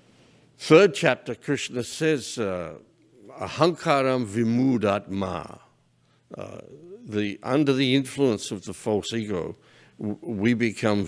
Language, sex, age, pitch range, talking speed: English, male, 60-79, 95-120 Hz, 95 wpm